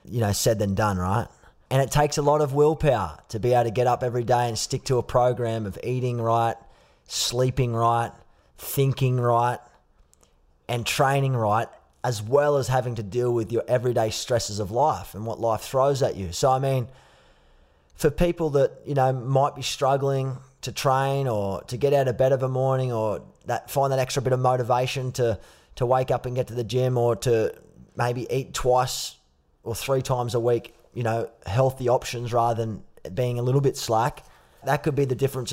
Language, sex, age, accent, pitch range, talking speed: English, male, 20-39, Australian, 115-135 Hz, 205 wpm